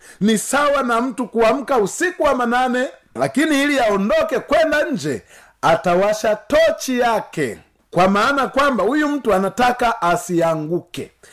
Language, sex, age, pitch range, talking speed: Swahili, male, 50-69, 215-290 Hz, 120 wpm